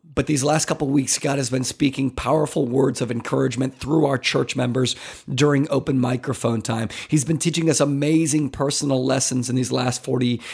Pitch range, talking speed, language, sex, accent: 135-170 Hz, 190 wpm, English, male, American